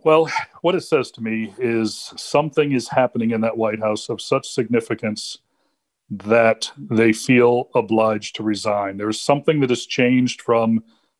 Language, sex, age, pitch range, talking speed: English, male, 40-59, 105-120 Hz, 160 wpm